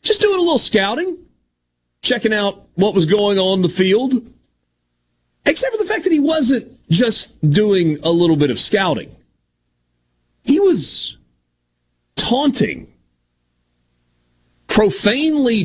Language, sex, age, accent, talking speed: English, male, 40-59, American, 120 wpm